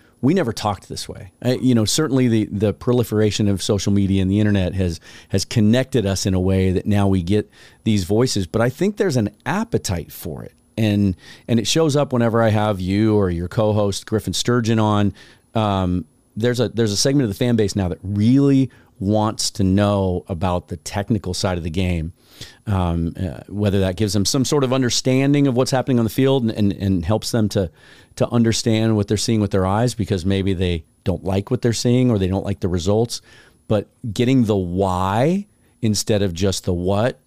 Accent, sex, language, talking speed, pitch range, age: American, male, English, 210 wpm, 95-120 Hz, 40-59